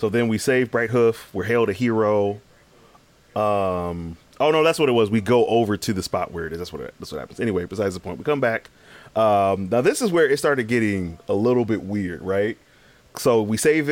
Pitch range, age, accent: 95-125 Hz, 30-49, American